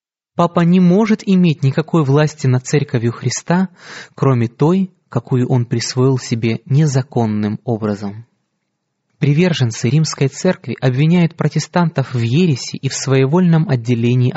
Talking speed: 115 wpm